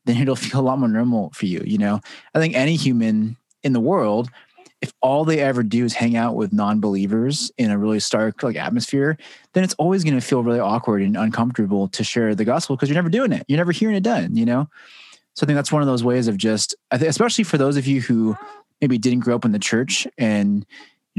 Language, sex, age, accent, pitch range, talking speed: English, male, 20-39, American, 110-150 Hz, 245 wpm